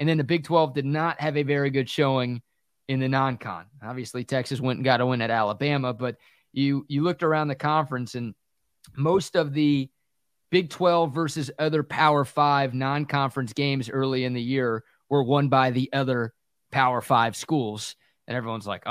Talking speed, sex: 185 wpm, male